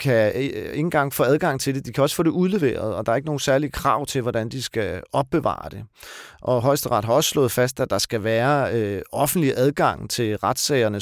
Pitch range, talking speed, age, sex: 110-145 Hz, 220 wpm, 40-59, male